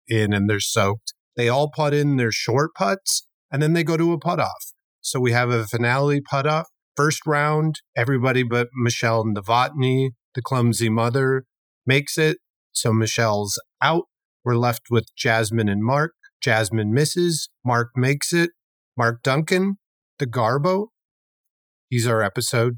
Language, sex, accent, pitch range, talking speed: English, male, American, 115-150 Hz, 150 wpm